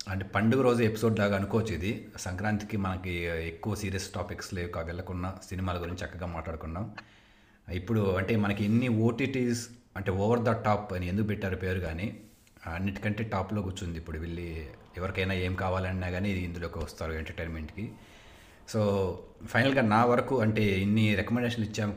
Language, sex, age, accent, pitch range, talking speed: Telugu, male, 30-49, native, 90-105 Hz, 145 wpm